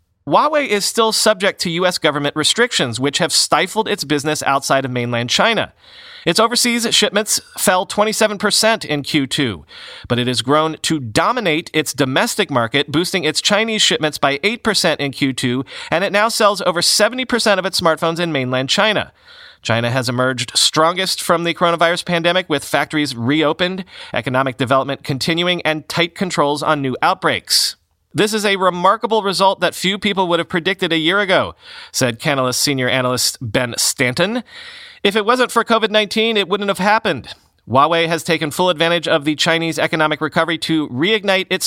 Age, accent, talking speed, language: 30-49, American, 165 wpm, English